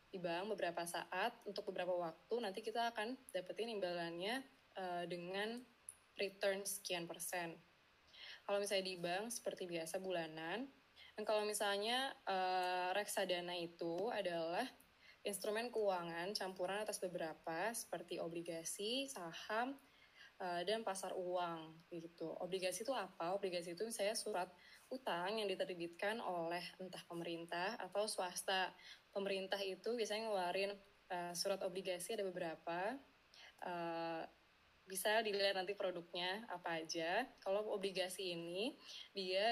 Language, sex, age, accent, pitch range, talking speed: Indonesian, female, 20-39, native, 175-210 Hz, 115 wpm